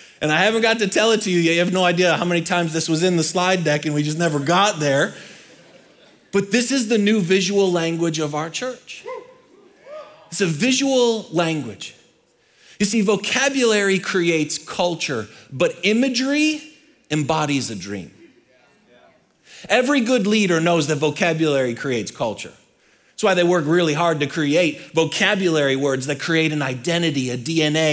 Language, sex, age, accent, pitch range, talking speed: English, male, 30-49, American, 150-205 Hz, 165 wpm